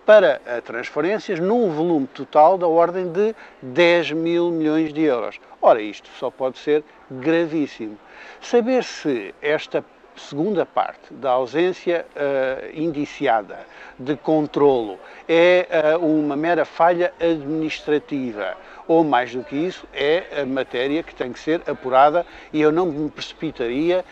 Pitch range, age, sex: 140-180 Hz, 50-69, male